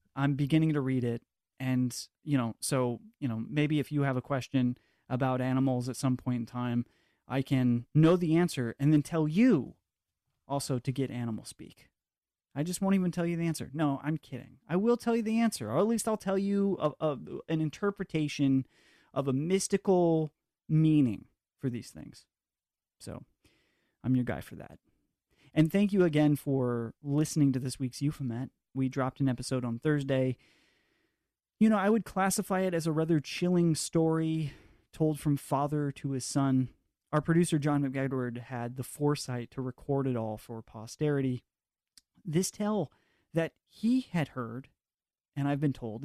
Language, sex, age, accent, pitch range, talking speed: English, male, 30-49, American, 130-160 Hz, 175 wpm